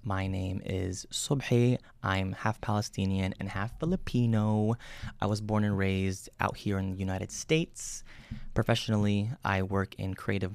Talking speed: 150 wpm